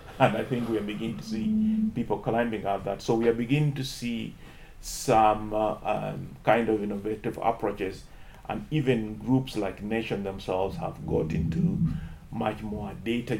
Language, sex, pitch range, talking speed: English, male, 105-130 Hz, 165 wpm